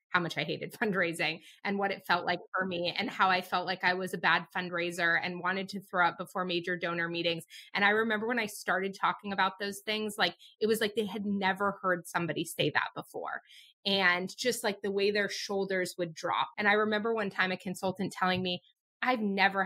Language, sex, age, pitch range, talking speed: English, female, 20-39, 180-220 Hz, 225 wpm